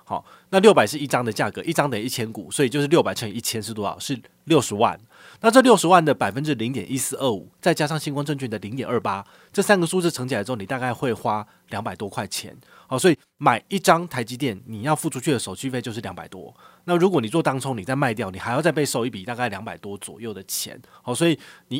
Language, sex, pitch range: Chinese, male, 120-160 Hz